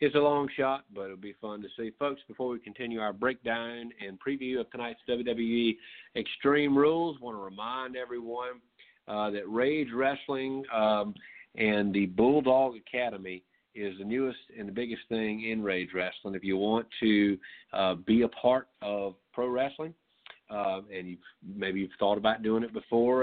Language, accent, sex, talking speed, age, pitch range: English, American, male, 175 wpm, 40-59, 100-120 Hz